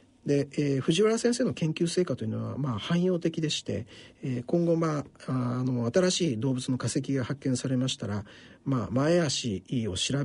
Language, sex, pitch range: Japanese, male, 110-145 Hz